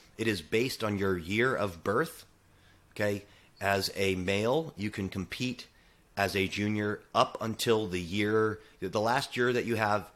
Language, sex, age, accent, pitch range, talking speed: English, male, 30-49, American, 90-105 Hz, 165 wpm